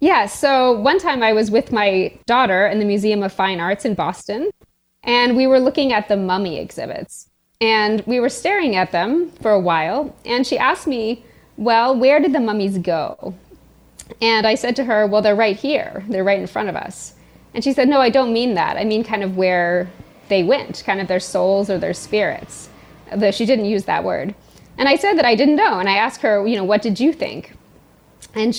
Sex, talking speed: female, 220 wpm